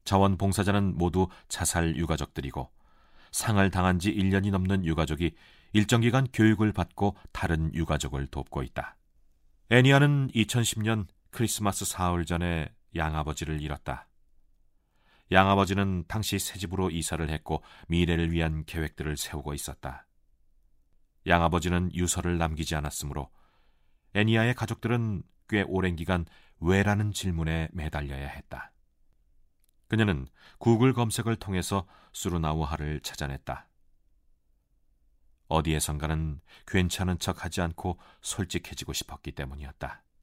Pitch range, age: 75-100 Hz, 40-59